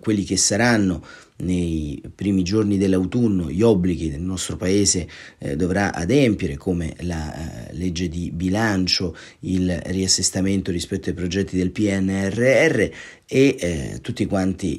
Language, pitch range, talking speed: Italian, 90-110 Hz, 125 wpm